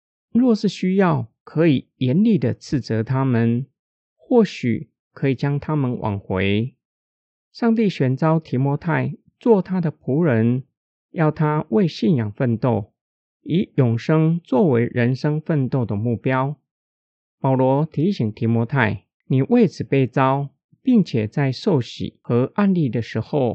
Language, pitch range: Chinese, 120-170 Hz